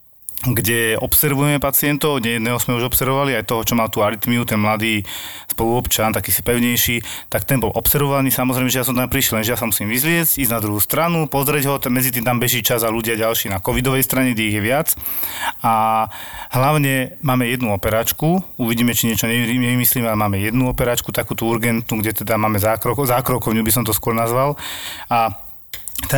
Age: 30-49